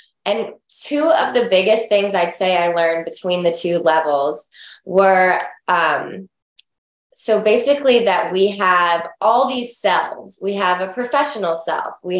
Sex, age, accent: female, 20-39, American